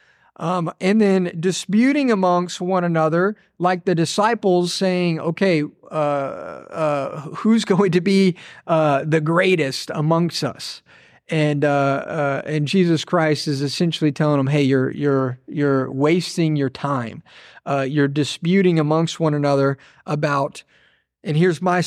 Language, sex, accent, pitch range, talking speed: English, male, American, 145-180 Hz, 135 wpm